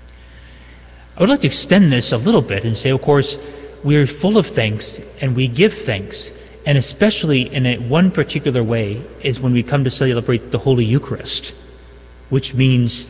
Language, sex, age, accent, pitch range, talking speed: English, male, 30-49, American, 110-145 Hz, 180 wpm